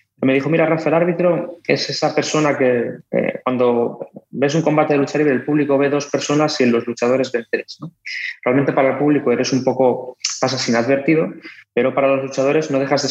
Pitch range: 120-150 Hz